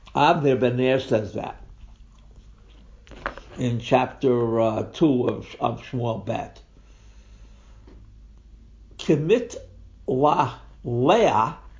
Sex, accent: male, American